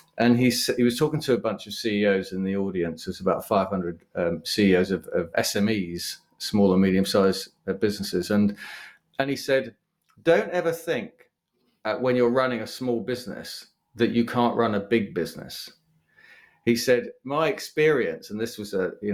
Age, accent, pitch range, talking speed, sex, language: 30-49, British, 95-130 Hz, 175 wpm, male, English